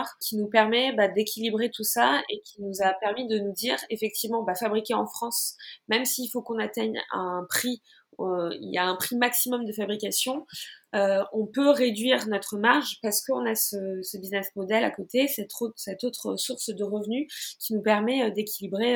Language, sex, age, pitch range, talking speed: French, female, 20-39, 200-240 Hz, 195 wpm